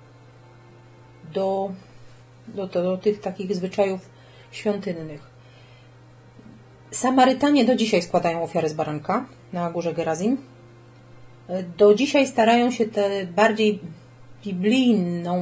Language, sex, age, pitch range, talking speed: Polish, female, 30-49, 125-205 Hz, 95 wpm